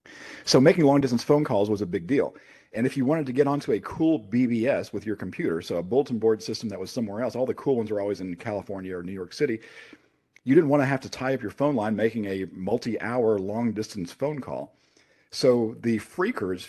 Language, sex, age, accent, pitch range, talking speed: English, male, 40-59, American, 100-125 Hz, 235 wpm